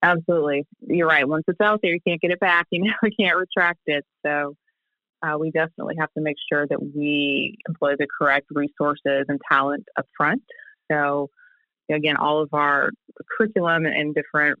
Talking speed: 180 wpm